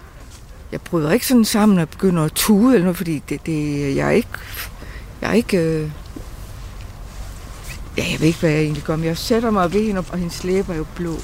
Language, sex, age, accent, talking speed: Danish, female, 60-79, native, 225 wpm